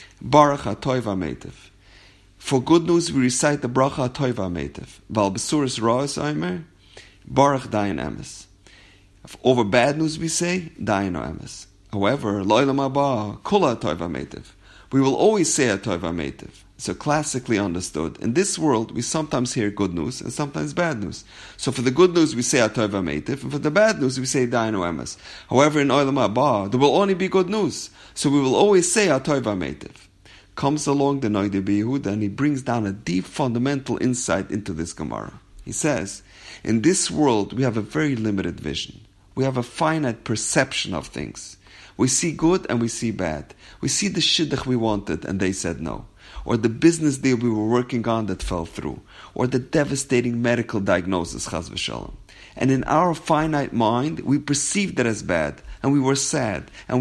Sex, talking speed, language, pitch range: male, 170 wpm, English, 100-145 Hz